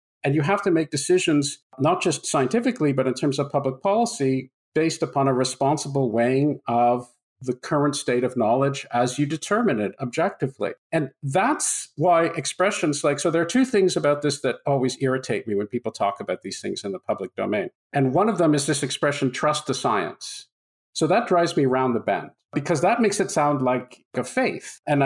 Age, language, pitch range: 50-69, English, 130-165 Hz